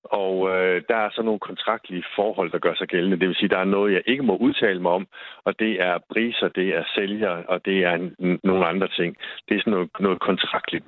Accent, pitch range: native, 175-205 Hz